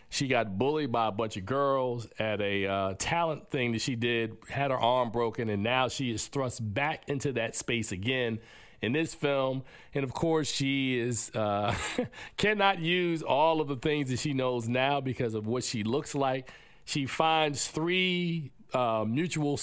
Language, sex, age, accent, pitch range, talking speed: English, male, 40-59, American, 120-170 Hz, 185 wpm